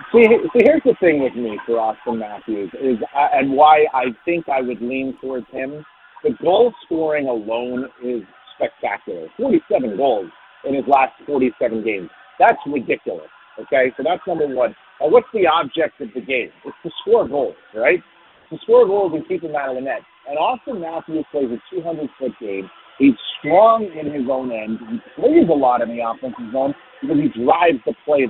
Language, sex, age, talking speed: English, male, 40-59, 190 wpm